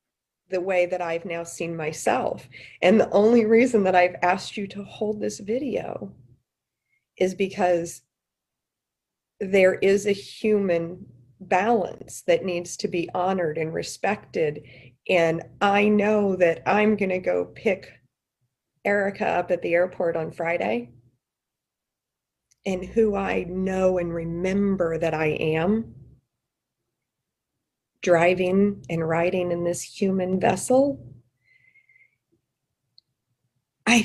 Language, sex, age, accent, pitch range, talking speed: English, female, 30-49, American, 135-210 Hz, 115 wpm